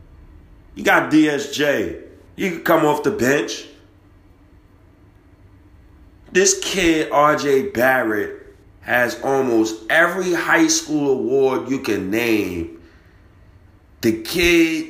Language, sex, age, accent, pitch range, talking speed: English, male, 30-49, American, 95-145 Hz, 95 wpm